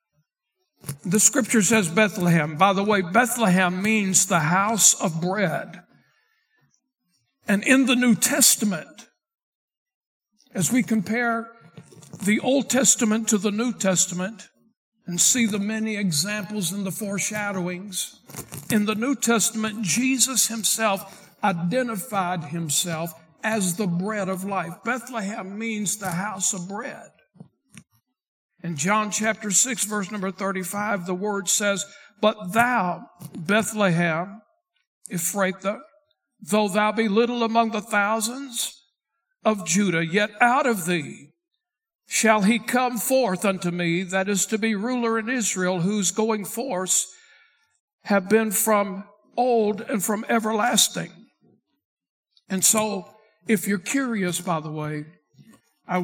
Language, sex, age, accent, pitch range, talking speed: English, male, 60-79, American, 185-230 Hz, 120 wpm